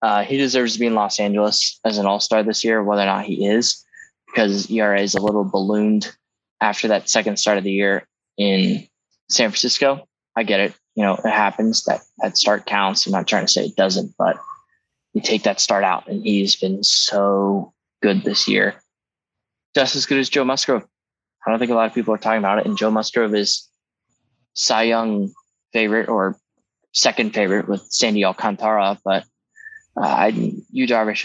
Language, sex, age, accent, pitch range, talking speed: English, male, 10-29, American, 100-115 Hz, 190 wpm